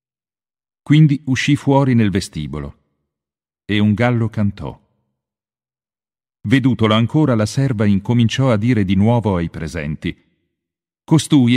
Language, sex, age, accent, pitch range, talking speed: Italian, male, 50-69, native, 85-120 Hz, 110 wpm